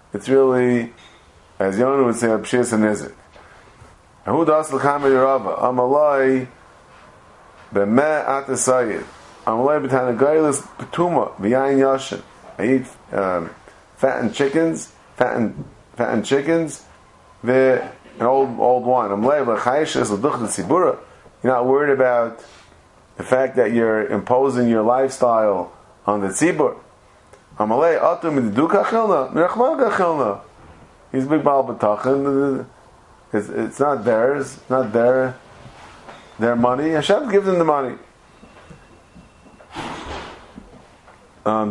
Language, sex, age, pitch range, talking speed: English, male, 30-49, 115-150 Hz, 75 wpm